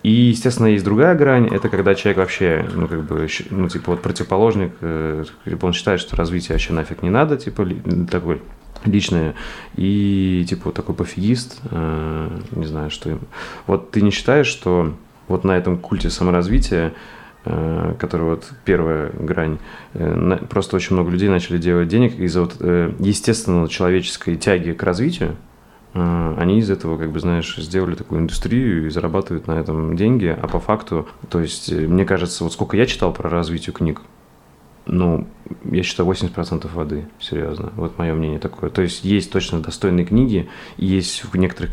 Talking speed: 170 wpm